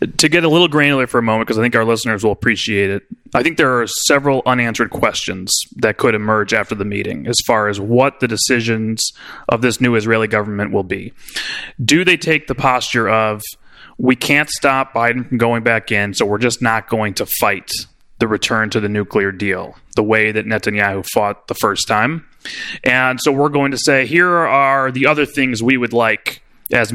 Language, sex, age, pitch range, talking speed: English, male, 30-49, 115-140 Hz, 205 wpm